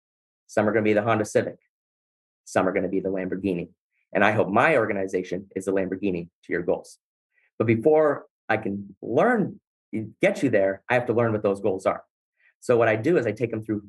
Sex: male